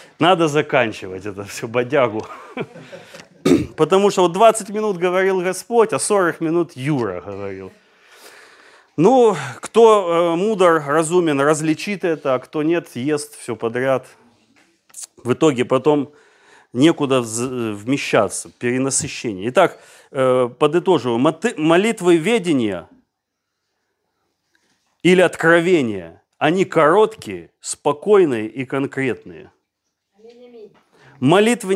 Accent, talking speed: native, 90 wpm